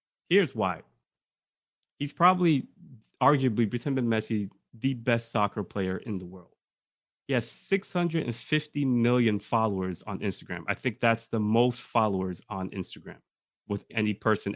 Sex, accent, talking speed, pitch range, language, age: male, American, 130 wpm, 110-155 Hz, English, 30-49